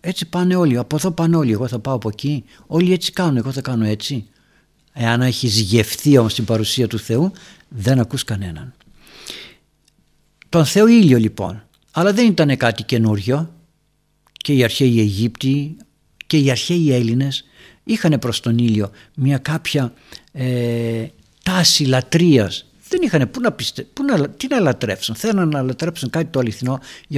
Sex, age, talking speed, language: male, 60-79, 155 wpm, Greek